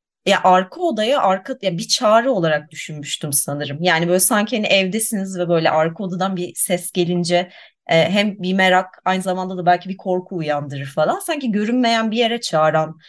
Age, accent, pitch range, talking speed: 30-49, native, 160-210 Hz, 180 wpm